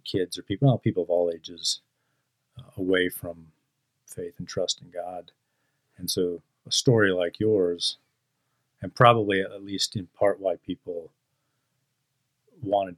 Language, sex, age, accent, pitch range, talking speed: English, male, 40-59, American, 95-140 Hz, 150 wpm